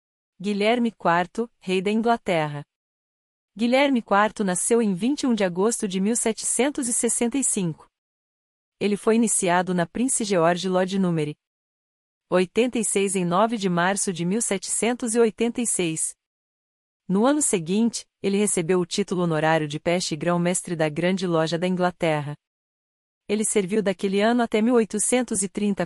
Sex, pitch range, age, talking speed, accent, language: female, 180-230 Hz, 40-59, 120 wpm, Brazilian, Portuguese